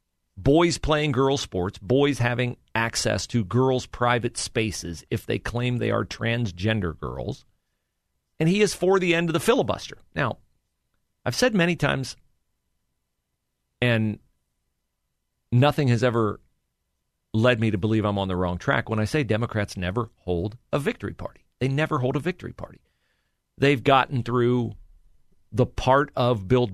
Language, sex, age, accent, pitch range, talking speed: English, male, 40-59, American, 100-135 Hz, 150 wpm